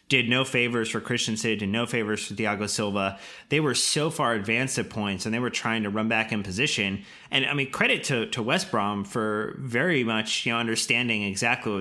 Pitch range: 105-130 Hz